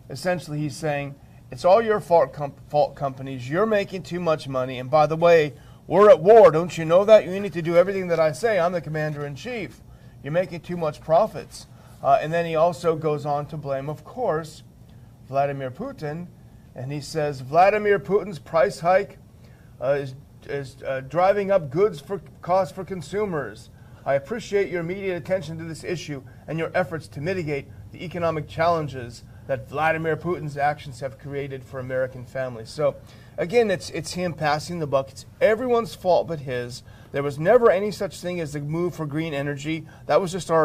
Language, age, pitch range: English, 40-59, 130-175 Hz